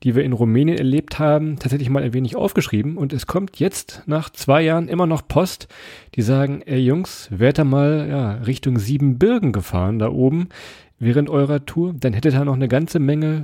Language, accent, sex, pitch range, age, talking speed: German, German, male, 120-160 Hz, 40-59, 195 wpm